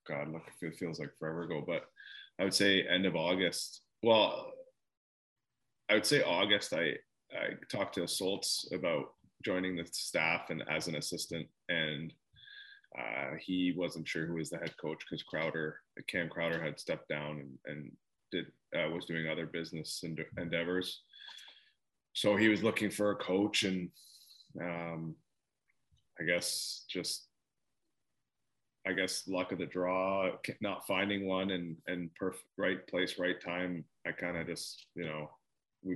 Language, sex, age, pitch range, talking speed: English, male, 20-39, 80-95 Hz, 155 wpm